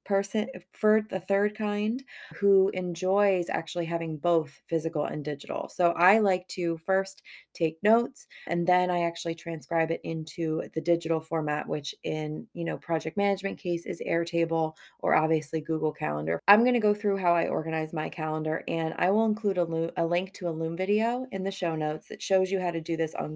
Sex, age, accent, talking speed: female, 20-39, American, 195 wpm